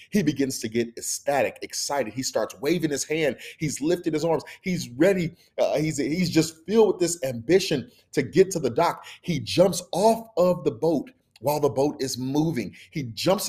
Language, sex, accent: English, male, American